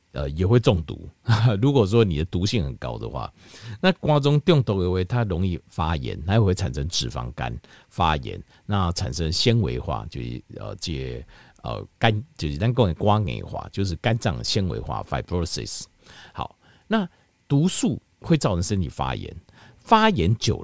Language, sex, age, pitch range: Chinese, male, 50-69, 90-125 Hz